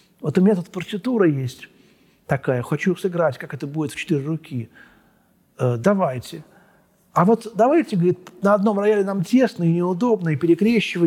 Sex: male